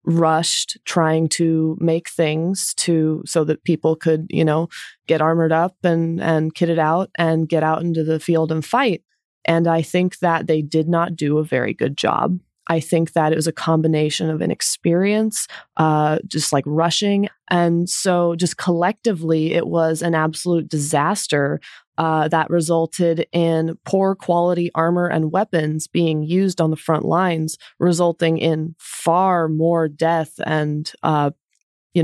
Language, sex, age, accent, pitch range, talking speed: English, female, 20-39, American, 155-175 Hz, 155 wpm